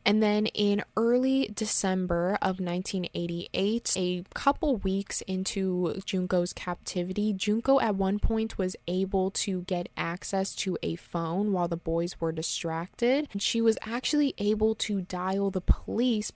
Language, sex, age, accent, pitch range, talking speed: English, female, 20-39, American, 180-215 Hz, 145 wpm